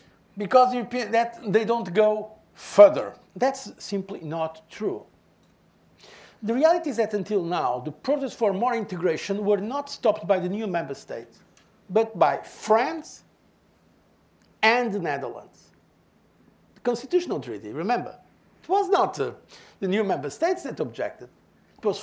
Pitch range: 185-260 Hz